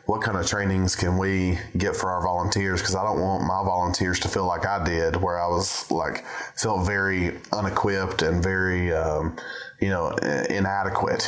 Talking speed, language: 180 wpm, English